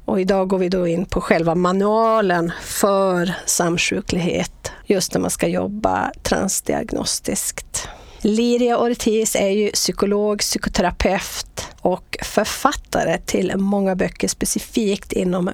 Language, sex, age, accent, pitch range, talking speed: English, female, 40-59, Swedish, 180-220 Hz, 110 wpm